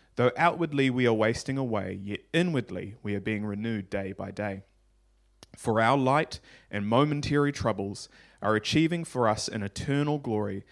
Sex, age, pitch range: male, 20-39, 100-125 Hz